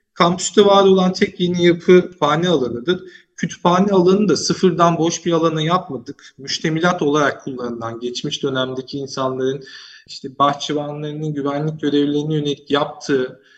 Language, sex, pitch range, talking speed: Turkish, male, 140-180 Hz, 125 wpm